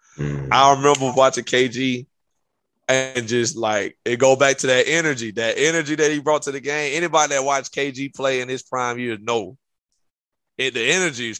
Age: 20-39